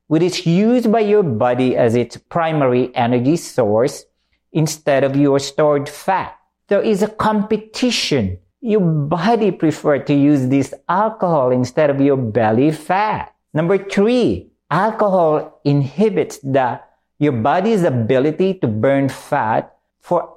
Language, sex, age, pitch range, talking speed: English, male, 50-69, 125-205 Hz, 130 wpm